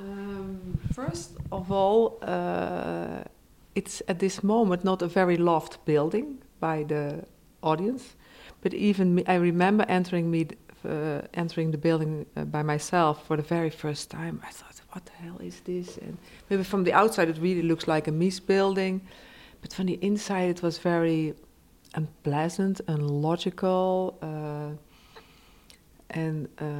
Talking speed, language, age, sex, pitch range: 155 wpm, English, 50-69, female, 155-185 Hz